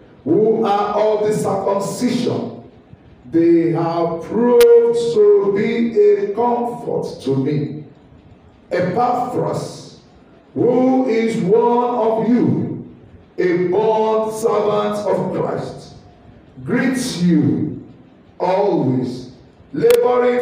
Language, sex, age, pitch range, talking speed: English, male, 50-69, 155-235 Hz, 85 wpm